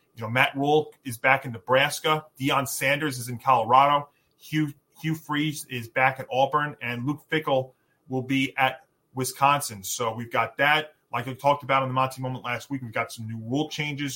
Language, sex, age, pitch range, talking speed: English, male, 30-49, 130-150 Hz, 200 wpm